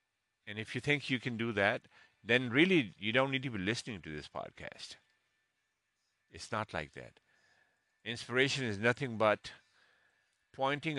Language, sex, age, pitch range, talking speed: English, male, 50-69, 95-115 Hz, 155 wpm